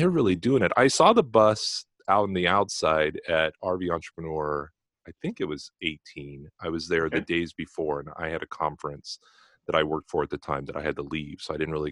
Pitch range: 75-90 Hz